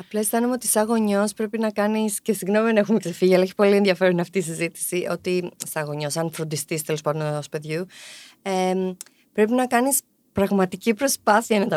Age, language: 20-39, Greek